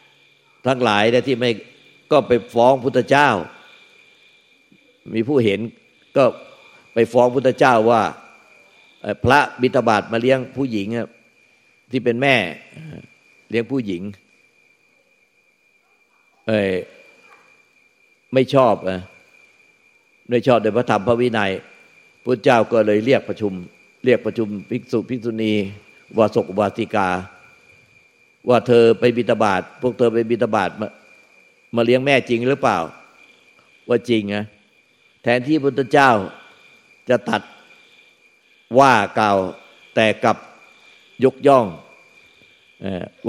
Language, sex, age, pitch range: Thai, male, 50-69, 105-130 Hz